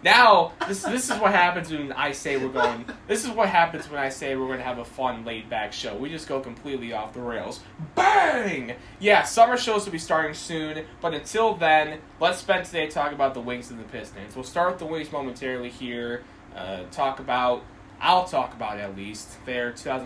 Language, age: English, 10-29